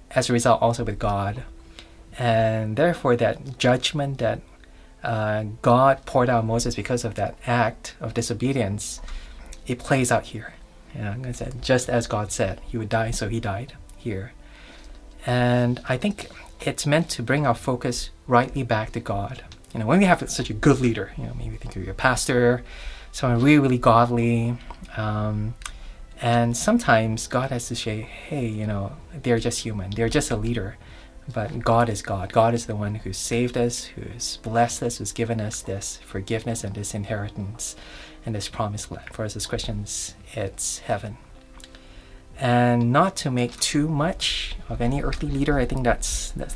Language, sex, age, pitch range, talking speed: English, male, 20-39, 105-125 Hz, 180 wpm